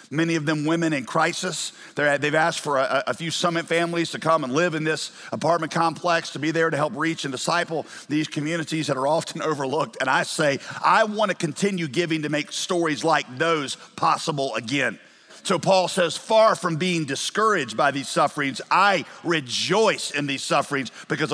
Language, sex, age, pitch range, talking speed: English, male, 50-69, 155-190 Hz, 185 wpm